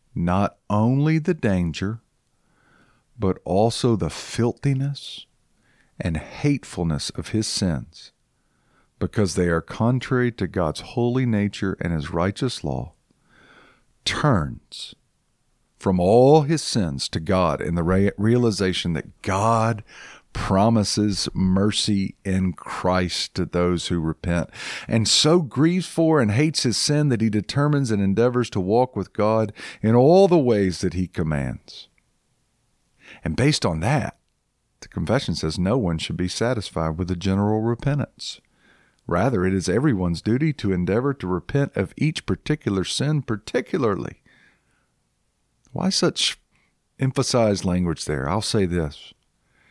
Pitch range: 90-125 Hz